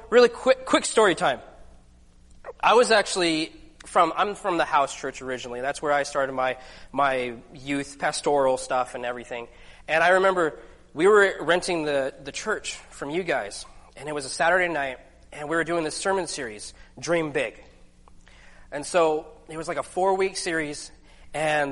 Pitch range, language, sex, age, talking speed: 125-170 Hz, English, male, 20-39, 175 wpm